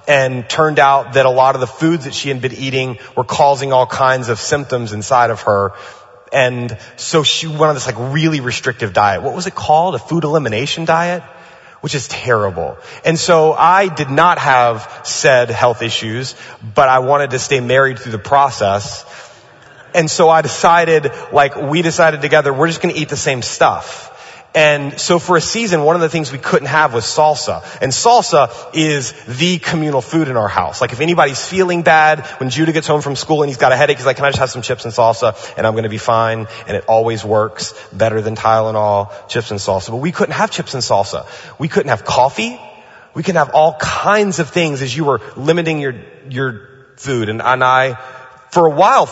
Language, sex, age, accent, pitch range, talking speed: English, male, 30-49, American, 125-160 Hz, 215 wpm